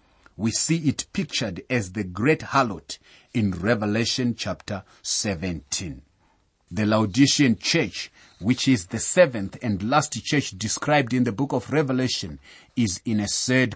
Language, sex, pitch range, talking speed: English, male, 100-135 Hz, 140 wpm